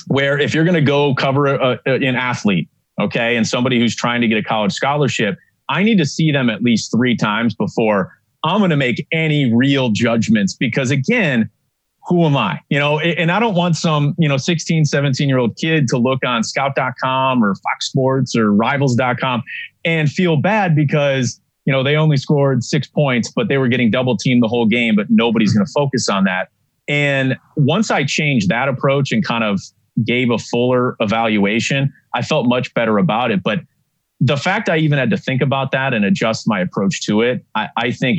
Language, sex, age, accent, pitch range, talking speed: English, male, 30-49, American, 125-160 Hz, 205 wpm